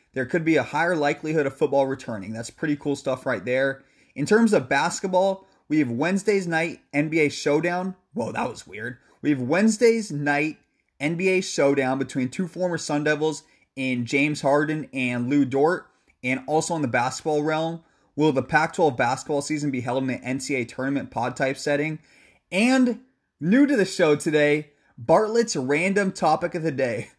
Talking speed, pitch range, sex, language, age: 170 wpm, 140-185 Hz, male, English, 20-39